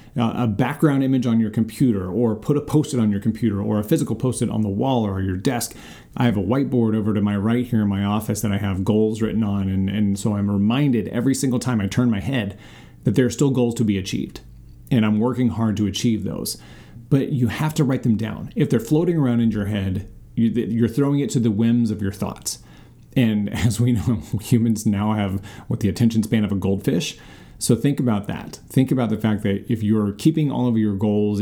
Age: 30-49